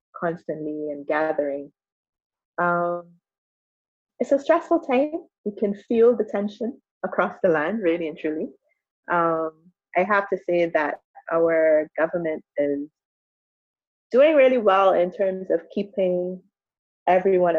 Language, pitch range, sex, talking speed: English, 160-200 Hz, female, 125 wpm